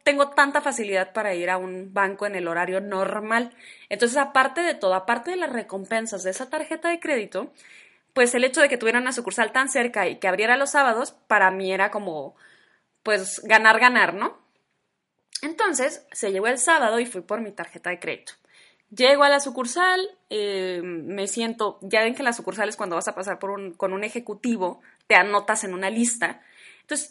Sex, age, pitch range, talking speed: female, 20-39, 195-275 Hz, 195 wpm